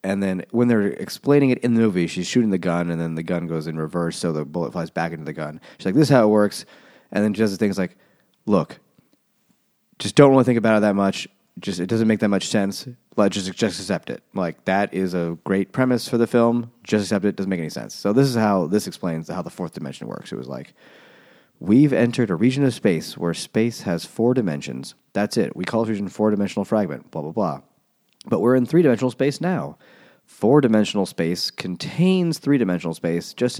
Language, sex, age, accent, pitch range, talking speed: English, male, 30-49, American, 90-120 Hz, 230 wpm